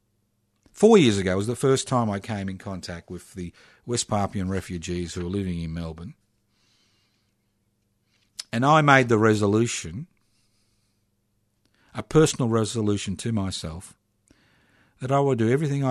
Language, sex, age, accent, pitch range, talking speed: English, male, 50-69, Australian, 95-115 Hz, 135 wpm